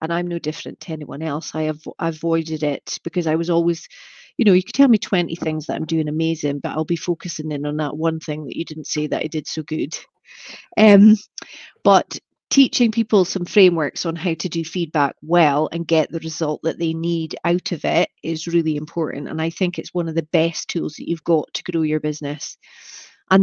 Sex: female